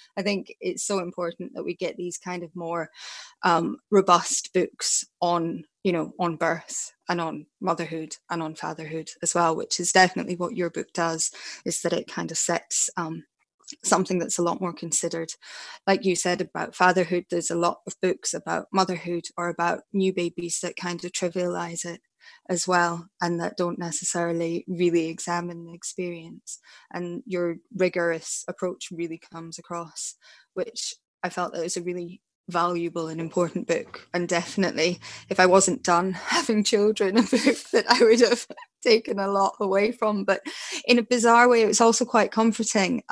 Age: 20-39